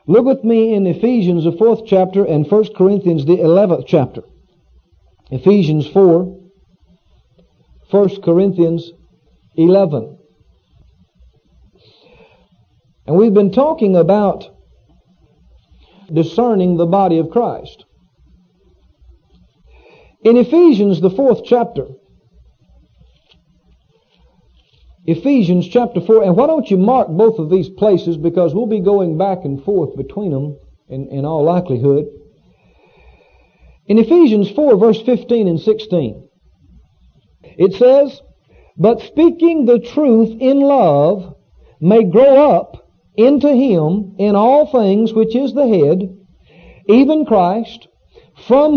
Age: 50-69